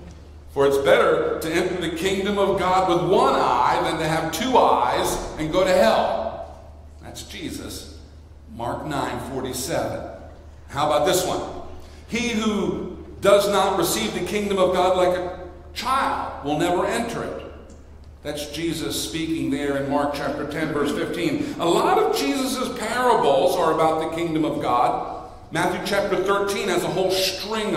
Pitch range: 165-225 Hz